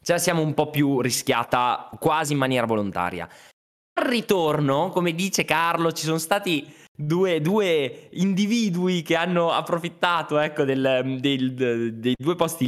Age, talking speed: 20-39, 140 wpm